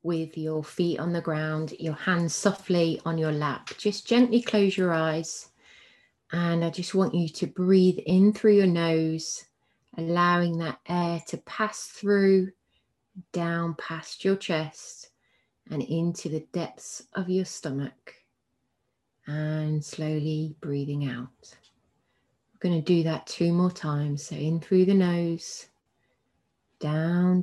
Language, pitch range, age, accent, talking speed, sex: English, 155-185 Hz, 30-49, British, 135 wpm, female